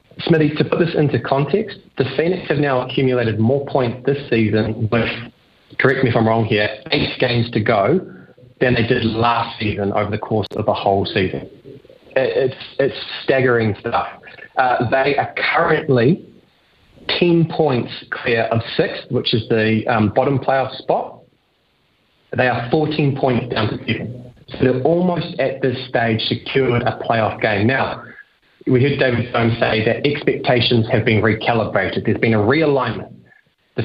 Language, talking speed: English, 160 wpm